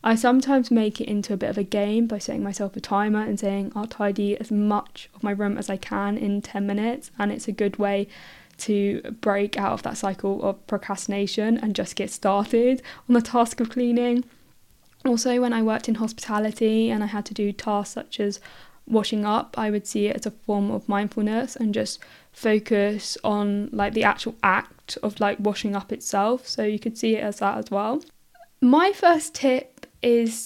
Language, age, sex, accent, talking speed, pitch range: English, 10-29, female, British, 205 wpm, 205-235 Hz